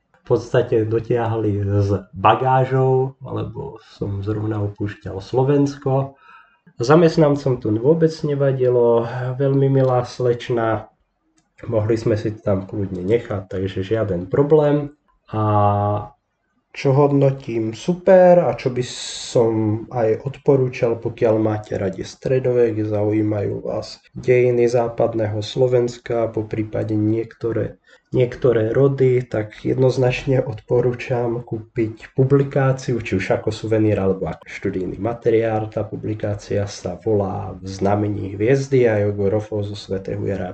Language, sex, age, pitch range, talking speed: Slovak, male, 20-39, 105-125 Hz, 110 wpm